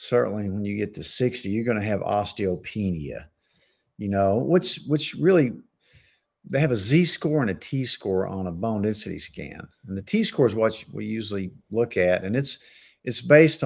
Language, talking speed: English, 195 wpm